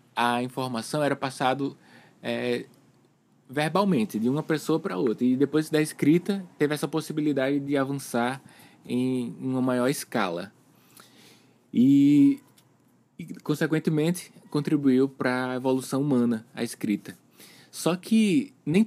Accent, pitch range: Brazilian, 125-155 Hz